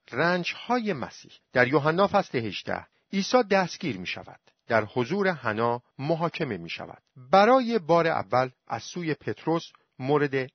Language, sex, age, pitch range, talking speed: Persian, male, 50-69, 115-190 Hz, 135 wpm